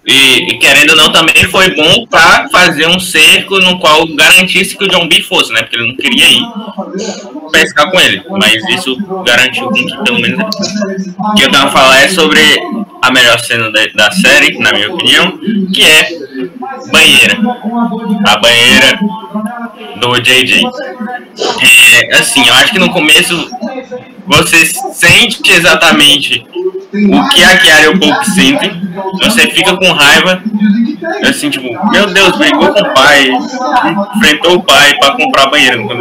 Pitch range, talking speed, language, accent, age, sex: 160-230 Hz, 165 wpm, Portuguese, Brazilian, 20-39, male